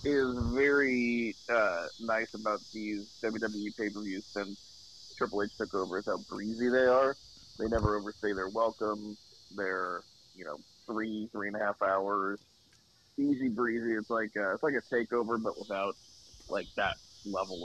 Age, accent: 30-49, American